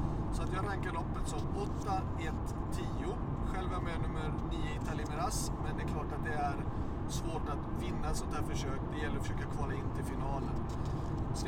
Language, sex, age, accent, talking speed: Swedish, male, 30-49, native, 195 wpm